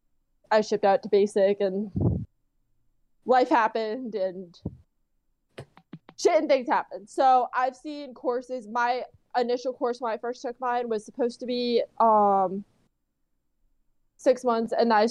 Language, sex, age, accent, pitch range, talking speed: English, female, 20-39, American, 200-245 Hz, 140 wpm